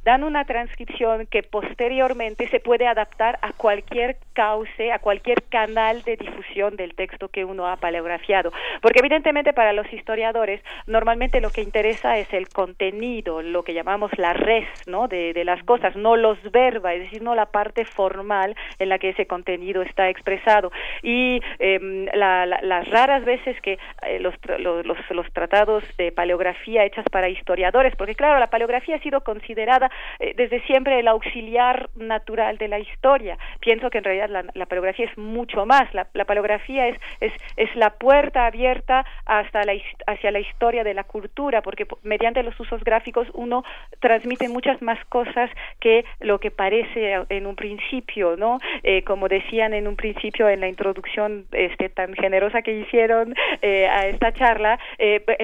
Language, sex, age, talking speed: Spanish, female, 40-59, 170 wpm